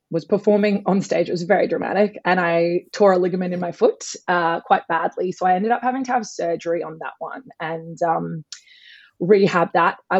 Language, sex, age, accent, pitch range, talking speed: English, female, 20-39, Australian, 175-215 Hz, 205 wpm